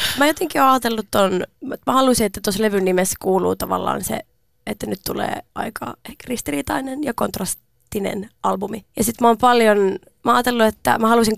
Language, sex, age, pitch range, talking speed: Finnish, female, 20-39, 190-225 Hz, 175 wpm